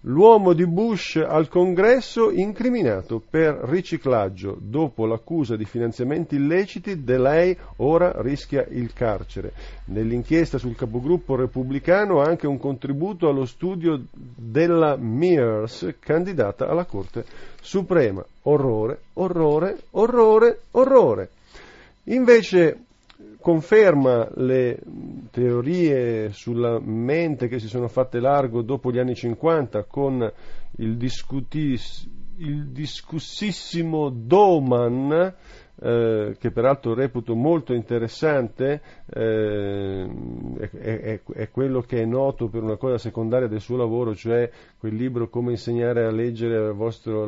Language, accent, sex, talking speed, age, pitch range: Italian, native, male, 115 wpm, 40-59, 115-165 Hz